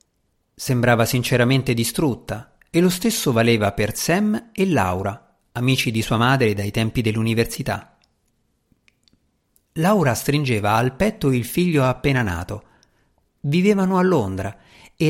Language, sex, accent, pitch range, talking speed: Italian, male, native, 105-155 Hz, 120 wpm